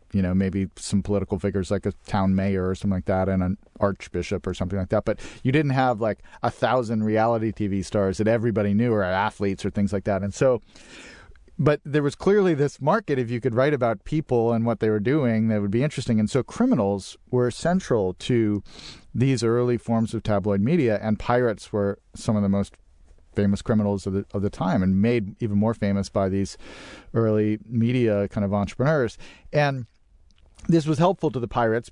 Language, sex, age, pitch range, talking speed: English, male, 40-59, 100-125 Hz, 200 wpm